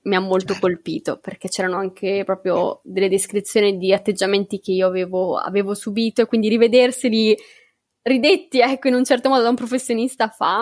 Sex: female